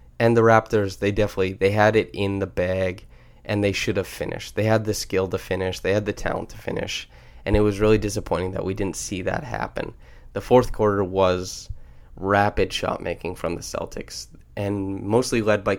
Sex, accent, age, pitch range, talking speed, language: male, American, 20-39, 95-110 Hz, 200 wpm, English